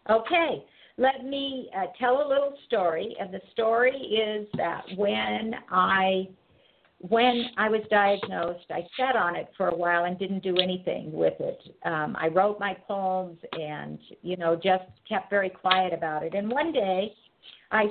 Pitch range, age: 180-230 Hz, 50-69